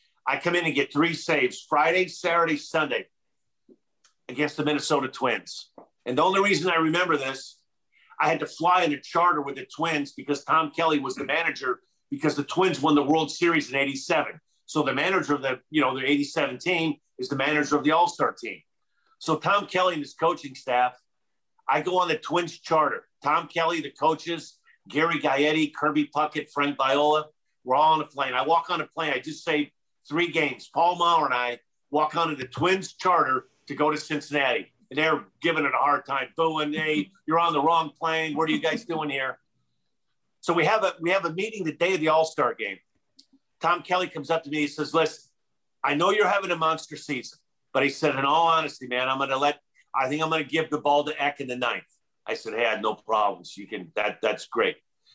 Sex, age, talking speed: male, 50-69, 220 wpm